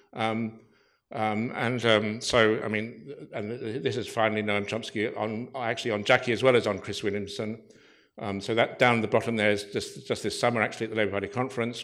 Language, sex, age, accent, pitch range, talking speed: English, male, 60-79, British, 110-135 Hz, 215 wpm